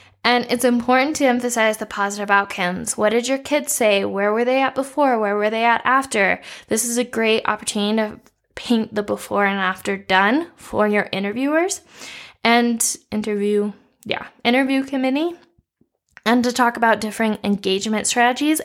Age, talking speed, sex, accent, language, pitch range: 10-29, 160 wpm, female, American, English, 200-260 Hz